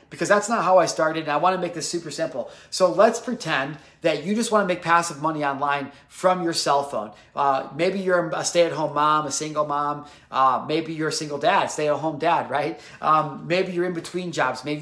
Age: 30-49